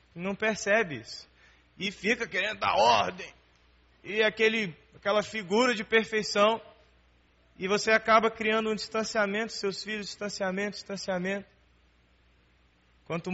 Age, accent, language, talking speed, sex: 20-39, Brazilian, Portuguese, 110 wpm, male